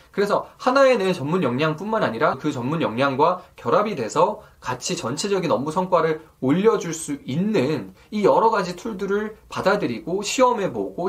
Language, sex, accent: Korean, male, native